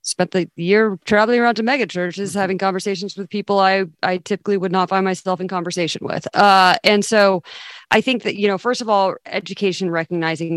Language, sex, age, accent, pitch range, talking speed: English, female, 30-49, American, 160-190 Hz, 200 wpm